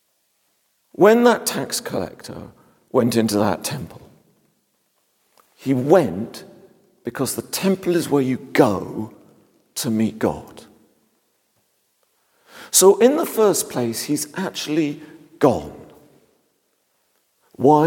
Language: English